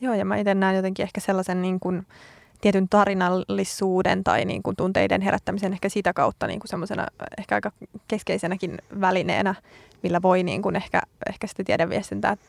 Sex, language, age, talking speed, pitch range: female, Finnish, 20-39, 165 wpm, 180-200 Hz